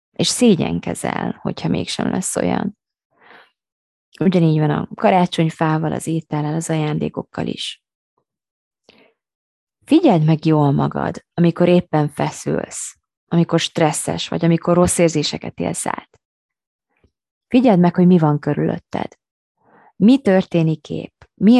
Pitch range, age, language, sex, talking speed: 150-195 Hz, 20-39, Hungarian, female, 110 wpm